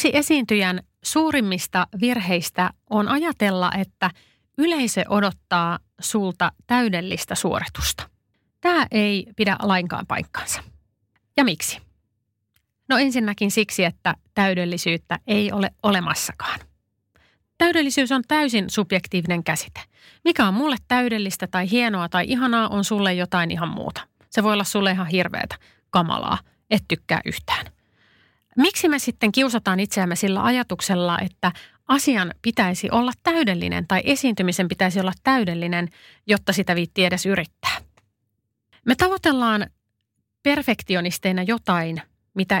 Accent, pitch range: native, 180-245 Hz